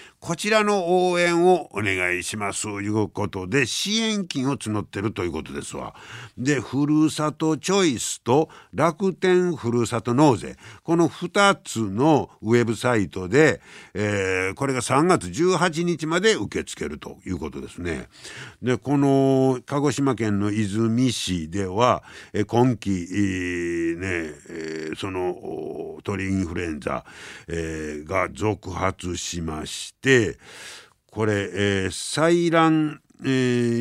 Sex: male